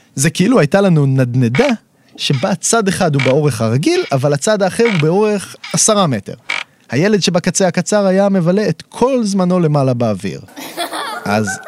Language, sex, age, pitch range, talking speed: Hebrew, male, 30-49, 130-190 Hz, 150 wpm